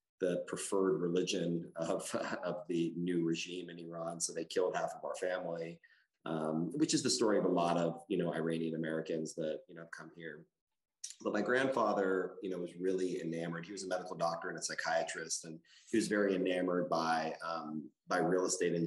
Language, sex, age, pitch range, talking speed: English, male, 30-49, 80-90 Hz, 195 wpm